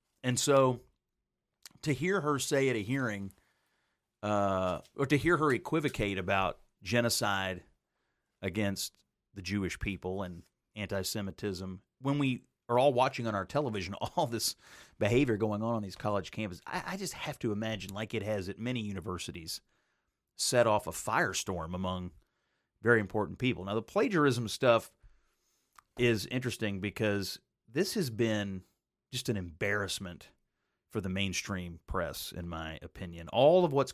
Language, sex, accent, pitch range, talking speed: English, male, American, 95-130 Hz, 145 wpm